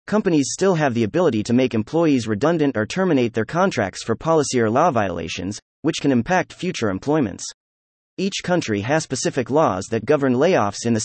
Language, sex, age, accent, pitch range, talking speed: English, male, 30-49, American, 105-160 Hz, 180 wpm